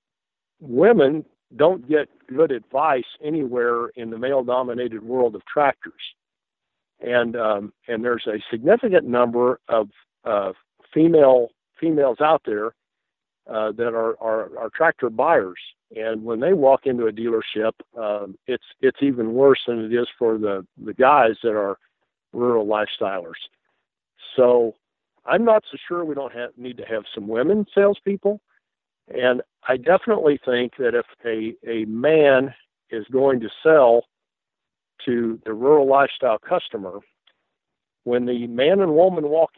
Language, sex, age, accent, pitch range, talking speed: English, male, 60-79, American, 115-155 Hz, 140 wpm